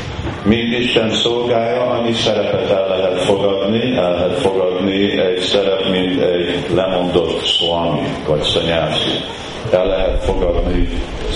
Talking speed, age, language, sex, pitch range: 115 wpm, 50-69, Hungarian, male, 90-115 Hz